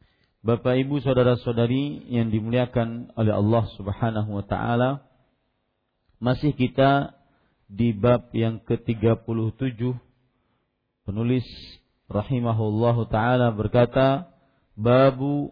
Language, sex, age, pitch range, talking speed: Malay, male, 40-59, 110-130 Hz, 80 wpm